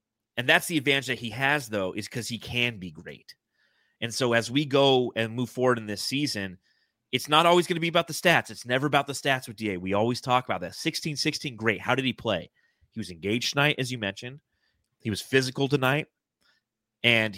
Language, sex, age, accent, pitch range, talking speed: English, male, 30-49, American, 105-140 Hz, 220 wpm